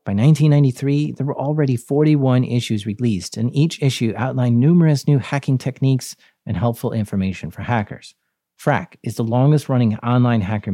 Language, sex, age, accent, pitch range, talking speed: English, male, 40-59, American, 105-130 Hz, 150 wpm